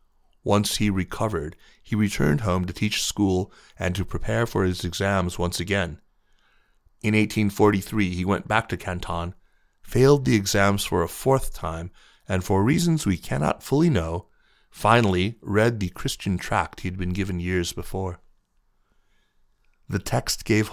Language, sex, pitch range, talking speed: English, male, 90-110 Hz, 150 wpm